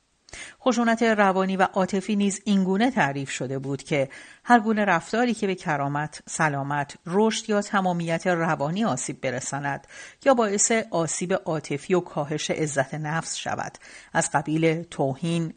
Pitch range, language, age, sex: 150-195 Hz, Persian, 60-79, female